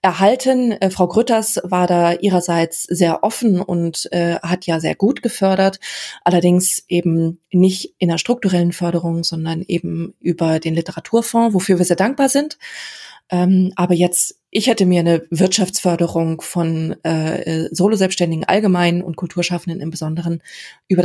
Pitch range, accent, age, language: 170-200 Hz, German, 20-39, German